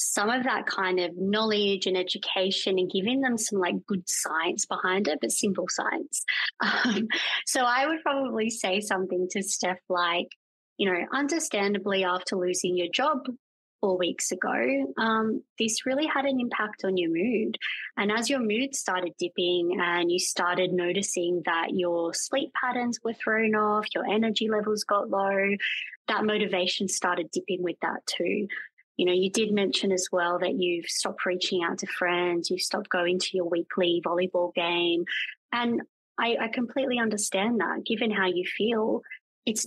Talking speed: 170 wpm